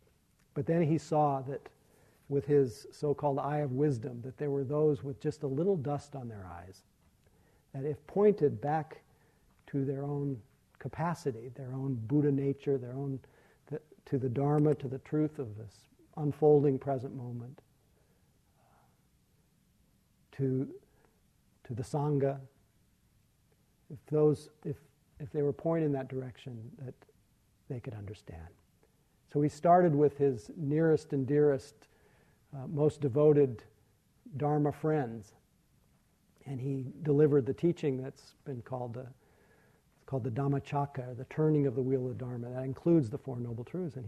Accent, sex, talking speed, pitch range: American, male, 140 wpm, 130-145 Hz